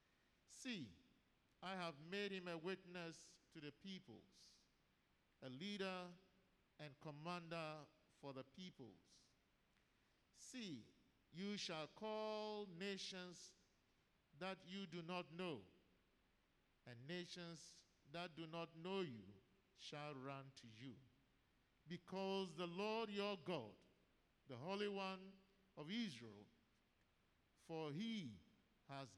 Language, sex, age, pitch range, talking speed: English, male, 50-69, 120-180 Hz, 105 wpm